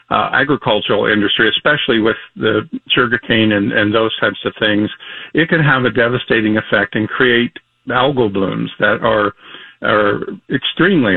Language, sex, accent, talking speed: English, male, American, 145 wpm